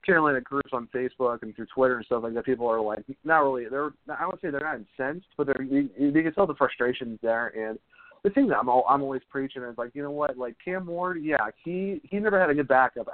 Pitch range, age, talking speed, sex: 120-150 Hz, 30-49, 260 wpm, male